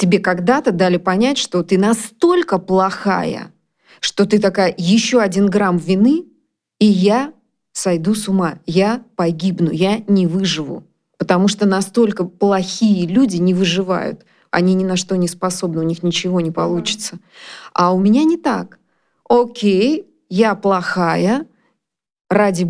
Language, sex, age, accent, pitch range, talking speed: Russian, female, 20-39, native, 180-220 Hz, 135 wpm